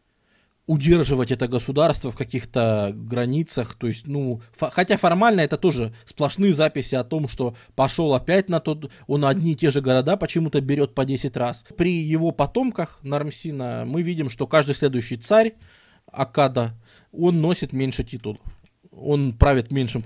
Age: 20-39